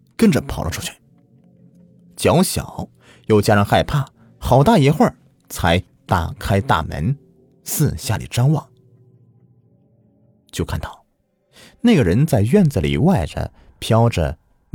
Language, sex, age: Chinese, male, 30-49